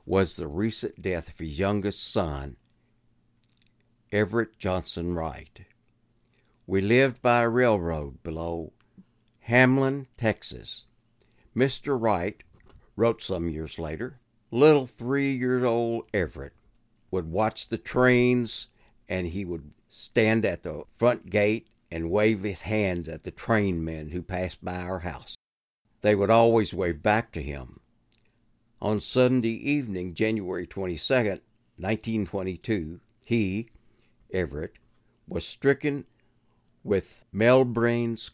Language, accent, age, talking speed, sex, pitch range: English, American, 60-79, 115 wpm, male, 85-115 Hz